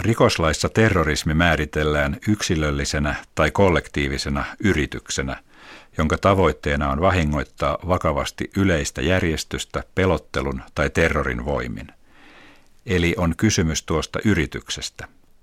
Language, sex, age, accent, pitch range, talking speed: Finnish, male, 50-69, native, 70-95 Hz, 90 wpm